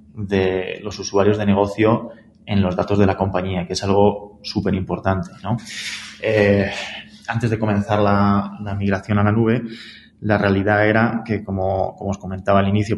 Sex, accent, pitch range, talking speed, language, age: male, Spanish, 95-105 Hz, 170 wpm, Spanish, 20-39